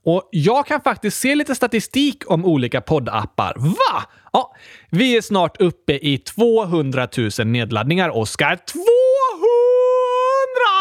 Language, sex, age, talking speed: Swedish, male, 30-49, 120 wpm